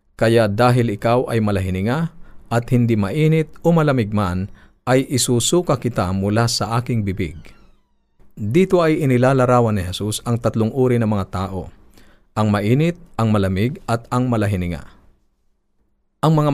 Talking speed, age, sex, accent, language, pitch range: 140 wpm, 50-69, male, native, Filipino, 100-130 Hz